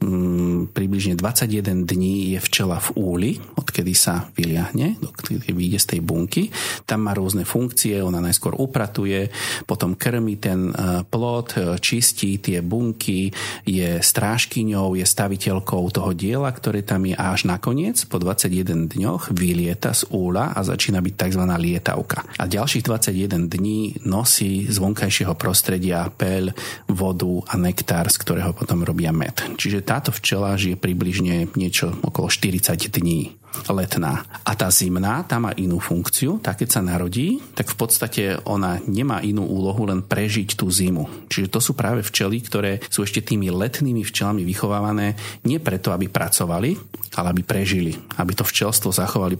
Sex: male